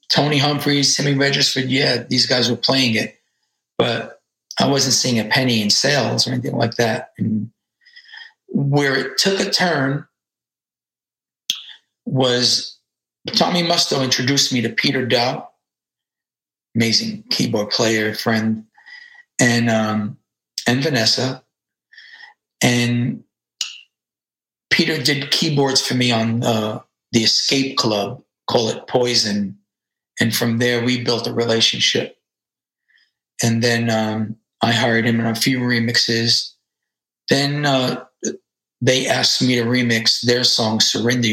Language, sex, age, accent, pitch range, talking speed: English, male, 40-59, American, 115-140 Hz, 120 wpm